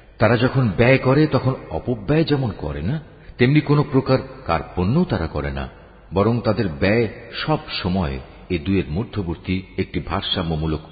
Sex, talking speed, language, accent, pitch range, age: male, 145 wpm, Bengali, native, 80-125 Hz, 50-69